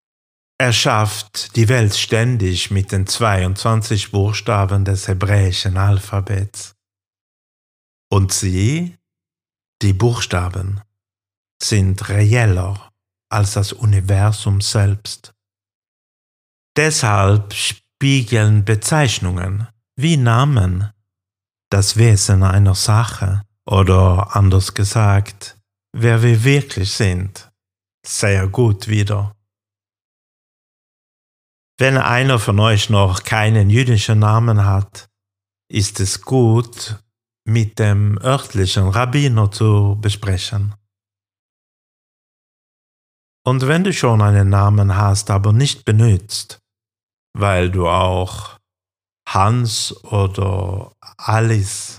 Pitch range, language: 100-110 Hz, German